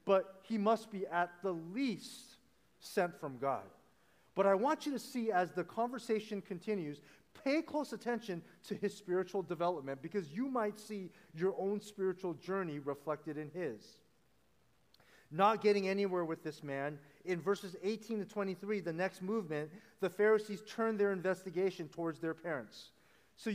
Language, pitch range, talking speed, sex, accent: English, 170-210 Hz, 155 wpm, male, American